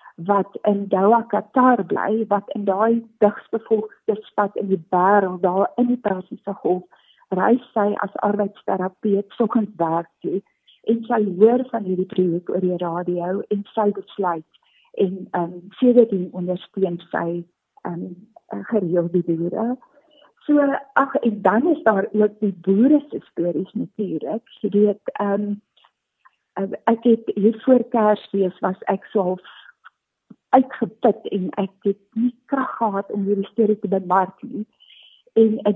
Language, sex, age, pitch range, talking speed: Swedish, female, 50-69, 190-230 Hz, 140 wpm